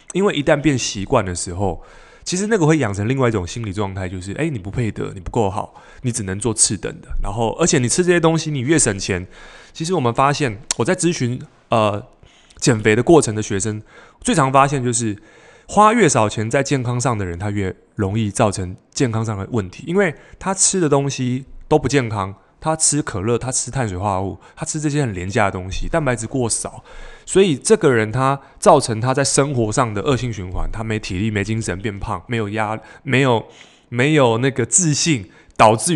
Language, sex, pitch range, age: Chinese, male, 105-145 Hz, 20-39